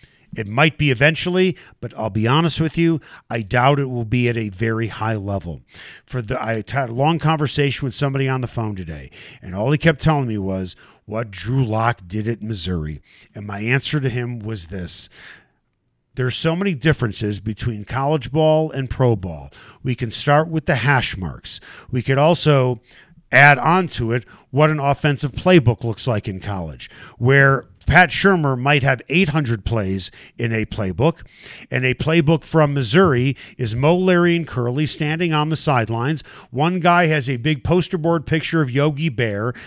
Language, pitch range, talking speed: English, 115-160 Hz, 180 wpm